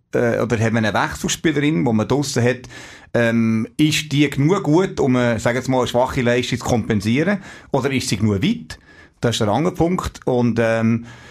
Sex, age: male, 30-49